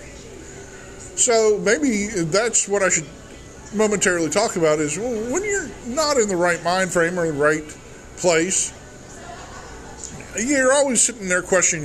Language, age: English, 20-39